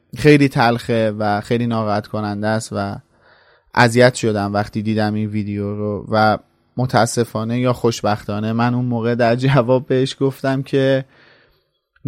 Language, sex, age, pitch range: Persian, male, 30-49, 115-135 Hz